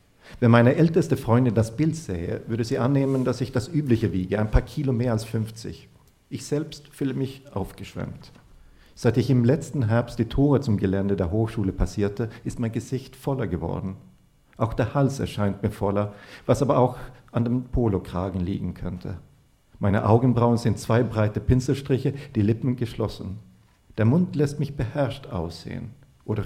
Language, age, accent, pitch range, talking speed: German, 50-69, German, 100-125 Hz, 165 wpm